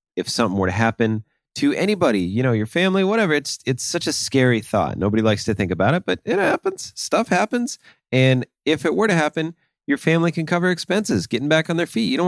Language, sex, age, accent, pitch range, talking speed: English, male, 30-49, American, 100-135 Hz, 230 wpm